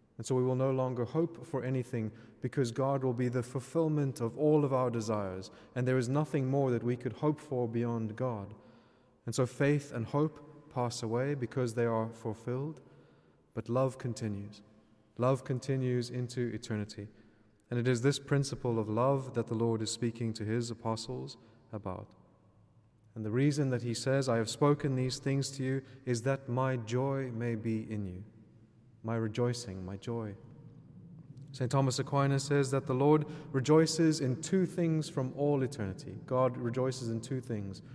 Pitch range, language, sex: 115-140 Hz, English, male